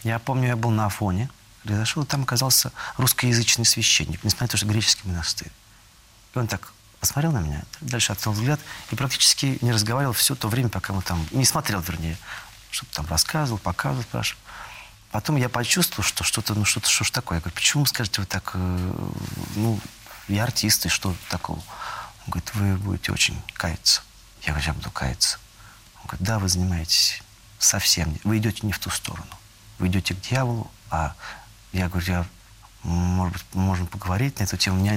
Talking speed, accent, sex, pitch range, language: 180 wpm, native, male, 90-115 Hz, Russian